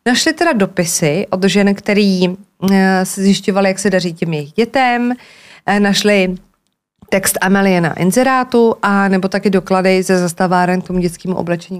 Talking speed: 145 wpm